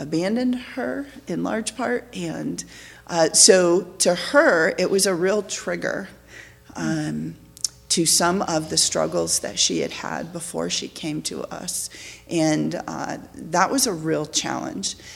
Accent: American